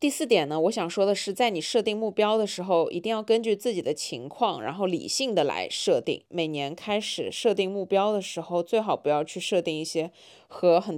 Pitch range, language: 170-225 Hz, Chinese